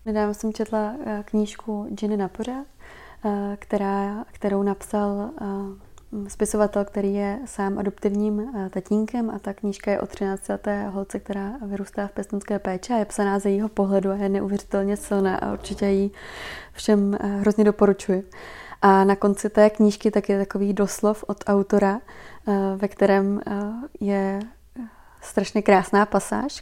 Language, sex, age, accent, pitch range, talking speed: Czech, female, 20-39, native, 200-210 Hz, 135 wpm